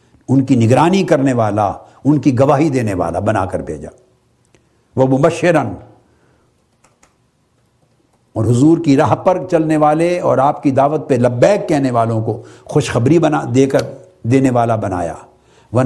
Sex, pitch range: male, 125-180 Hz